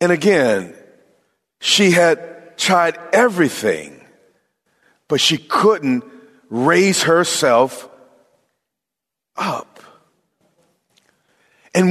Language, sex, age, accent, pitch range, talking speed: English, male, 50-69, American, 170-225 Hz, 65 wpm